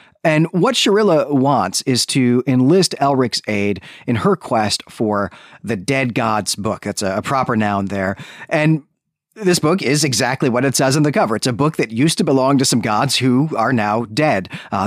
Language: English